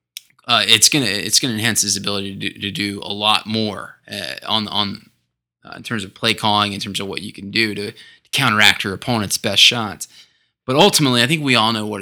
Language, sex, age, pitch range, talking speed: English, male, 20-39, 105-135 Hz, 230 wpm